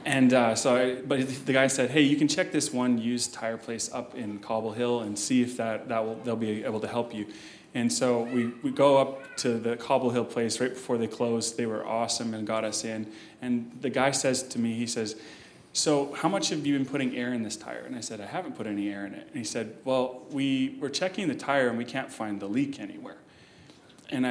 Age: 20-39